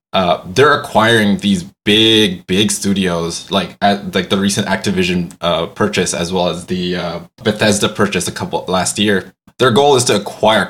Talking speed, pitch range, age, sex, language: 175 wpm, 95-115 Hz, 20-39, male, English